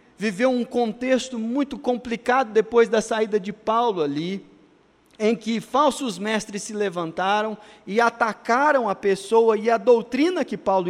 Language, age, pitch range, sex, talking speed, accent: Portuguese, 40-59, 195-240 Hz, male, 145 wpm, Brazilian